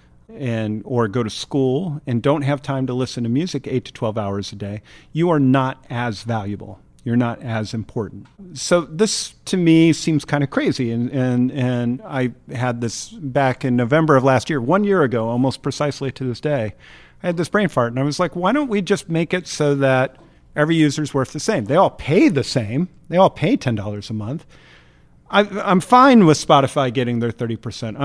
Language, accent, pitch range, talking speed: English, American, 120-155 Hz, 205 wpm